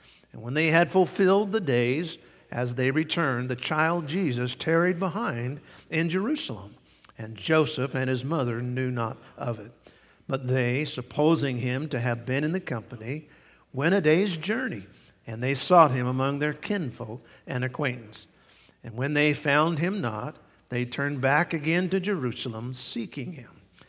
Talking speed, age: 160 wpm, 50-69